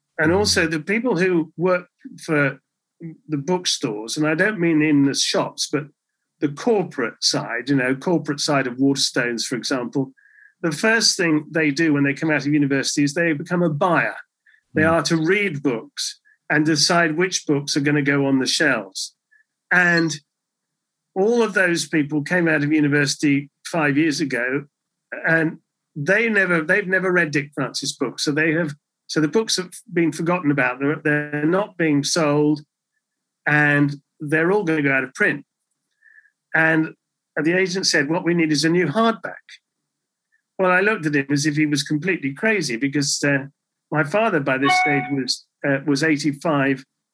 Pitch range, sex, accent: 140-170 Hz, male, British